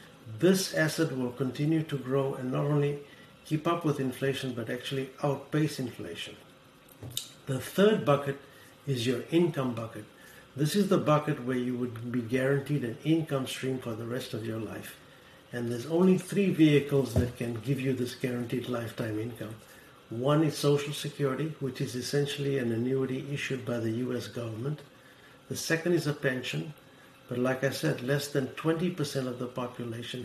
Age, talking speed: 60-79, 165 wpm